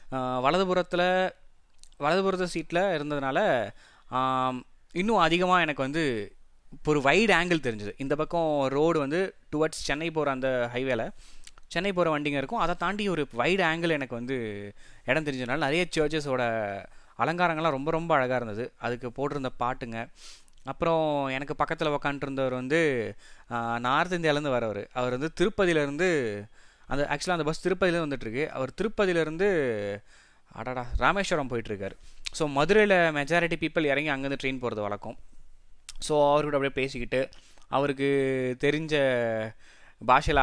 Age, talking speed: 20-39, 125 wpm